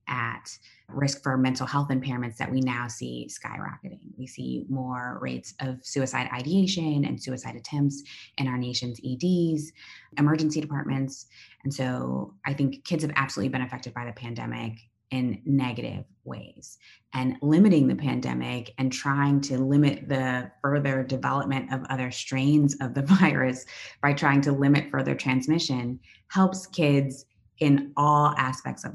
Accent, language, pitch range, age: American, English, 130-150 Hz, 20-39